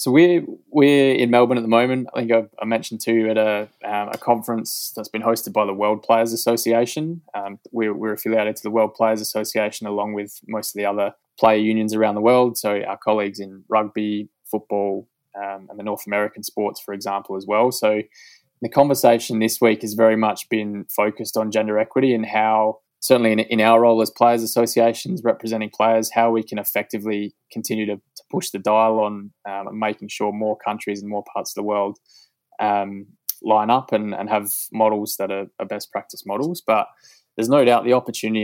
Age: 20-39